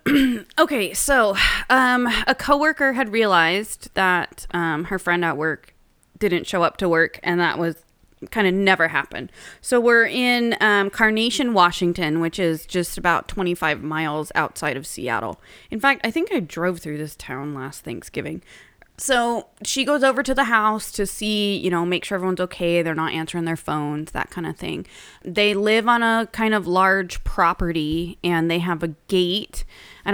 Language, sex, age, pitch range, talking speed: English, female, 20-39, 165-215 Hz, 180 wpm